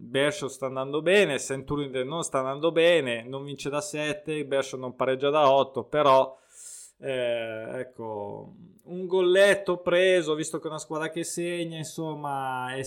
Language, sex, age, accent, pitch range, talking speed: Italian, male, 20-39, native, 130-165 Hz, 155 wpm